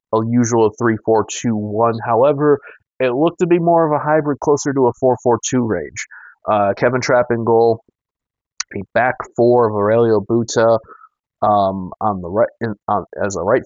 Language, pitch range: English, 105-125 Hz